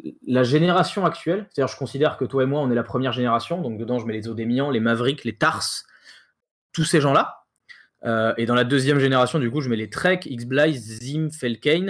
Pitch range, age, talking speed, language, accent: 130-185 Hz, 20-39, 230 wpm, French, French